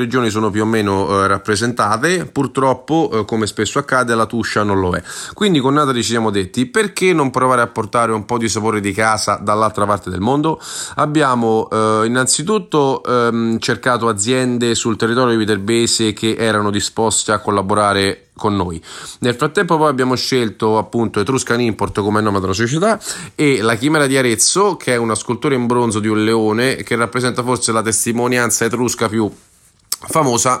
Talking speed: 175 wpm